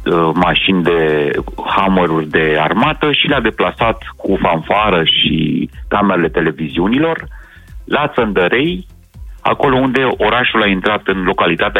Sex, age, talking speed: male, 30-49, 110 wpm